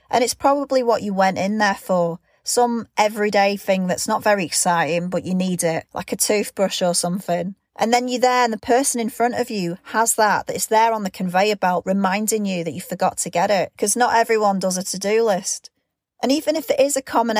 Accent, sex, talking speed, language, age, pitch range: British, female, 230 wpm, English, 30-49, 185-230 Hz